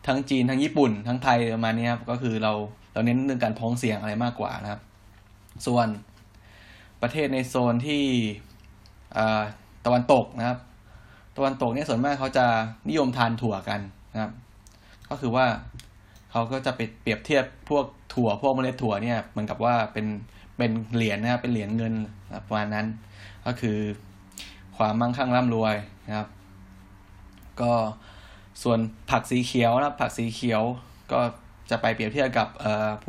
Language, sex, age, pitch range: Thai, male, 20-39, 105-120 Hz